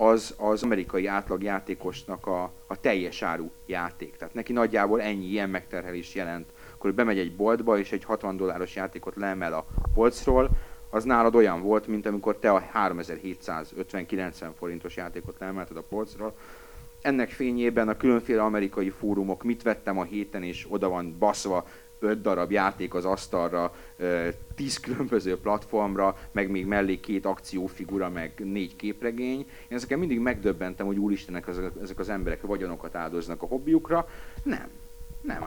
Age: 30-49